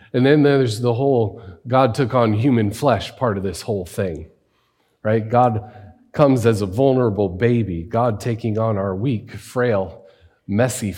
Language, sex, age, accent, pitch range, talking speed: English, male, 40-59, American, 90-110 Hz, 160 wpm